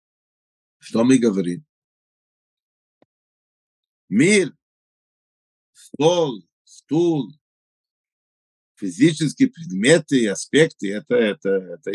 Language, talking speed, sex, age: Russian, 70 wpm, male, 50-69